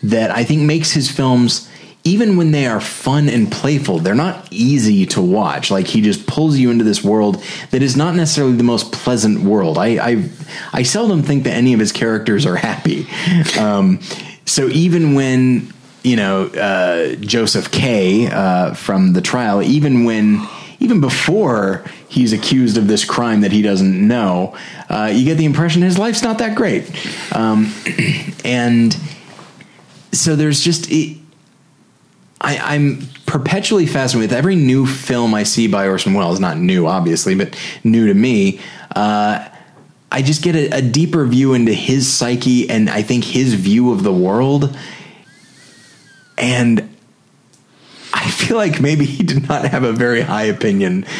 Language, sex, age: English, male, 30-49